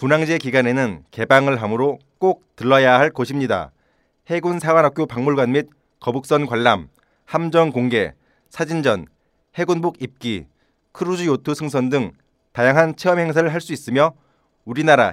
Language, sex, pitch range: Korean, male, 125-160 Hz